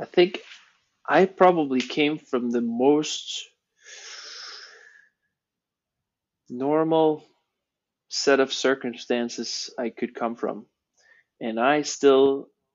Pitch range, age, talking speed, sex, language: 120-140 Hz, 20-39, 90 wpm, male, English